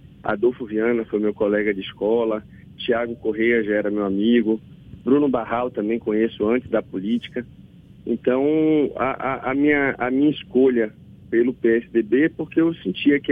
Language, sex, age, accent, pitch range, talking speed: Portuguese, male, 40-59, Brazilian, 115-145 Hz, 160 wpm